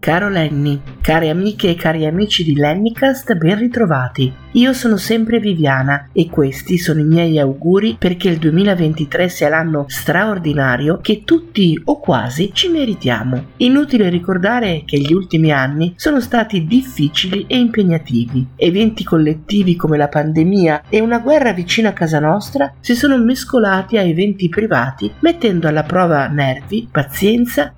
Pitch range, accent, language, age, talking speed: 145-210 Hz, native, Italian, 50-69, 145 wpm